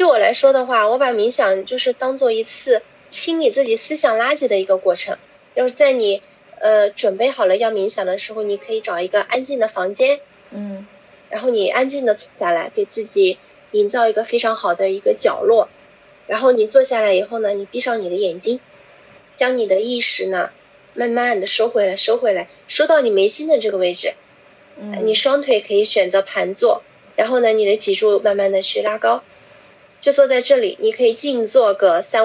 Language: Chinese